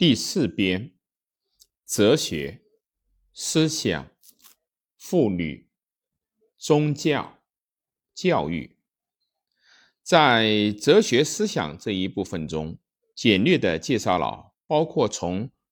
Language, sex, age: Chinese, male, 50-69